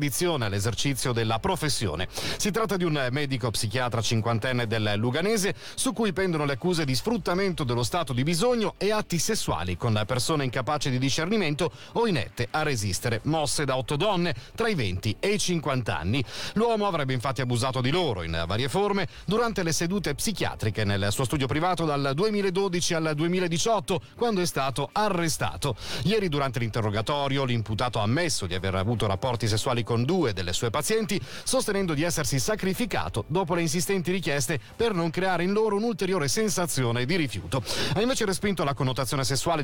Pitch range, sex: 120-190 Hz, male